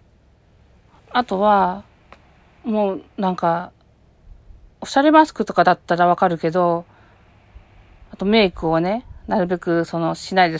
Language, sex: Japanese, female